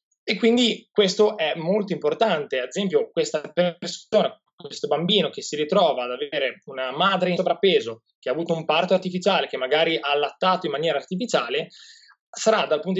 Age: 20-39